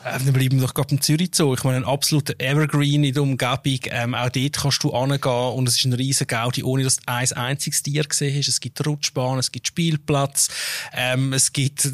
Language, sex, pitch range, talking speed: German, male, 120-145 Hz, 225 wpm